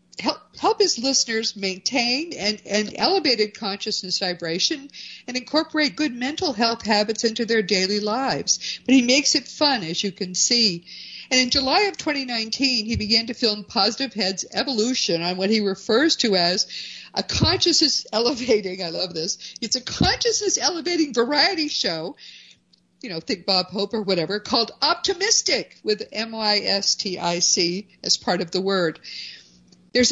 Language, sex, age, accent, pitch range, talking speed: English, female, 50-69, American, 185-260 Hz, 150 wpm